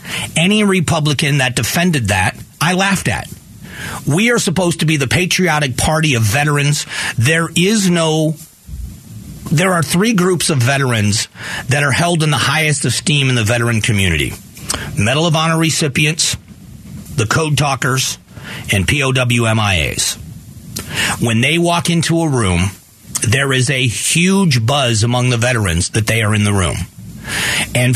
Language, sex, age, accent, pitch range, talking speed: English, male, 40-59, American, 120-160 Hz, 145 wpm